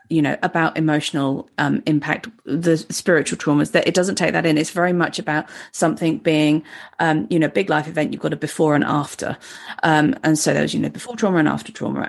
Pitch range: 155-200 Hz